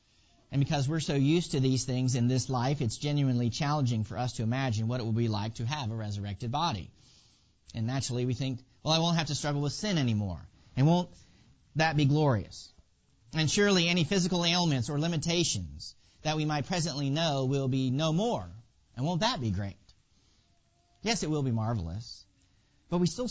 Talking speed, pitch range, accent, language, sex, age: 195 wpm, 115-165 Hz, American, English, male, 40-59